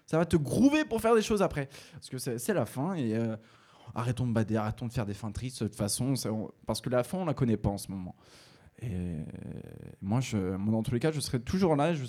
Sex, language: male, French